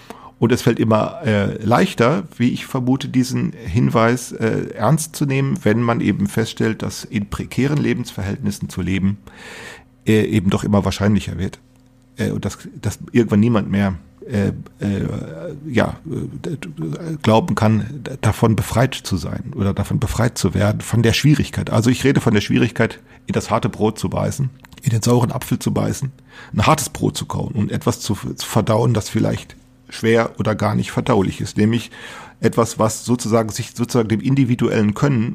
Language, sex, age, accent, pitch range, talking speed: German, male, 40-59, German, 105-125 Hz, 165 wpm